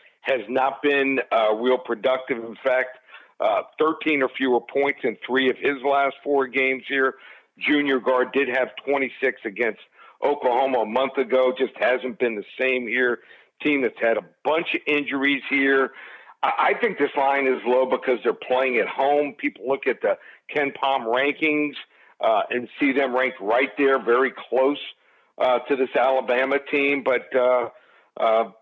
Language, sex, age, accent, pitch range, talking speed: English, male, 50-69, American, 125-145 Hz, 170 wpm